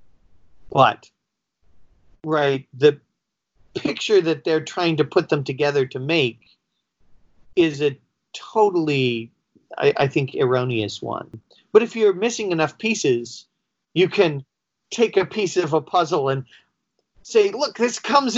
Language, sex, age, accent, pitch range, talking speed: English, male, 40-59, American, 135-195 Hz, 130 wpm